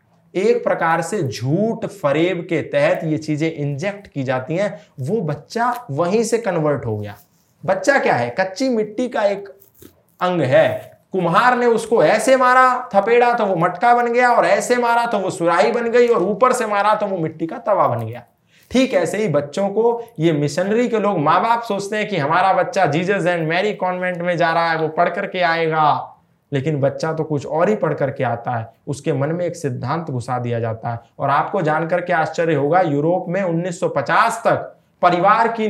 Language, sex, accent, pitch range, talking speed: Hindi, male, native, 160-220 Hz, 200 wpm